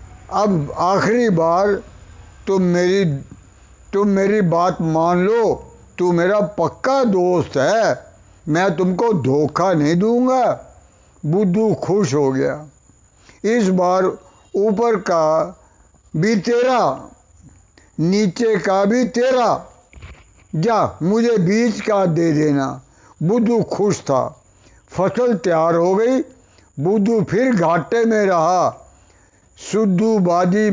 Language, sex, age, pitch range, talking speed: Punjabi, male, 60-79, 165-220 Hz, 105 wpm